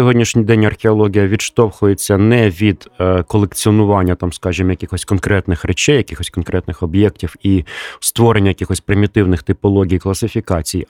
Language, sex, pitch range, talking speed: Ukrainian, male, 95-115 Hz, 115 wpm